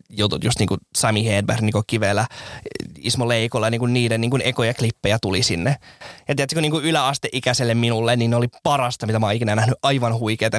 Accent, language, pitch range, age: native, Finnish, 115-150 Hz, 20-39